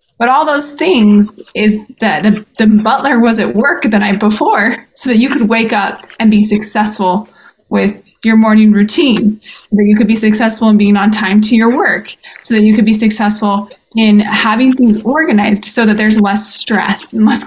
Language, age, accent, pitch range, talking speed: English, 20-39, American, 210-245 Hz, 195 wpm